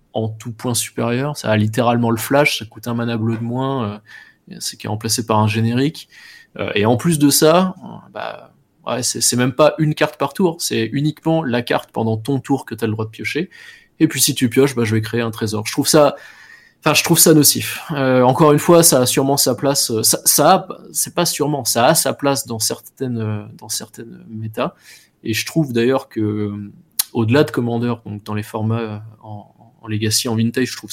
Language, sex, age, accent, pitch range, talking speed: French, male, 20-39, French, 110-135 Hz, 220 wpm